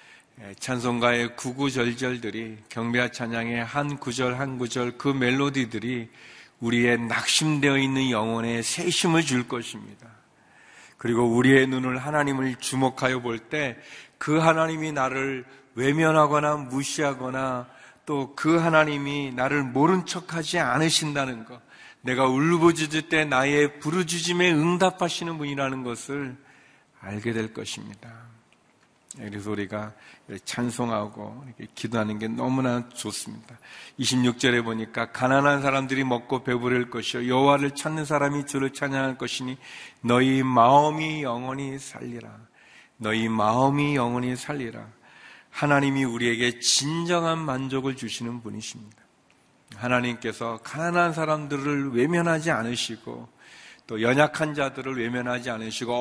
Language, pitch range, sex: Korean, 120-145 Hz, male